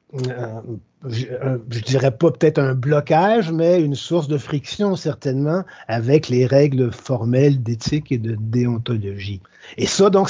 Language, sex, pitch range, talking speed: French, male, 120-160 Hz, 150 wpm